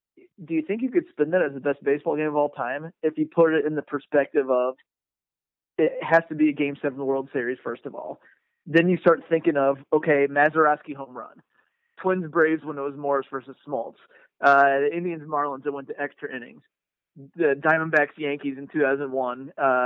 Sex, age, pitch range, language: male, 30-49, 140-160 Hz, English